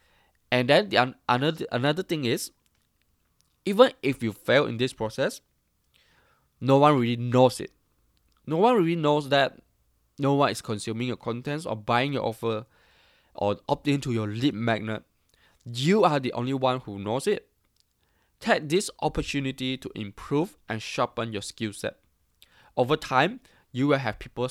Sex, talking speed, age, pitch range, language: male, 160 wpm, 20-39, 110-140 Hz, English